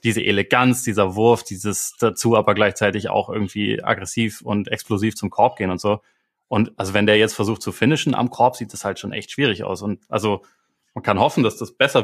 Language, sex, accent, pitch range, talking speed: German, male, German, 105-125 Hz, 215 wpm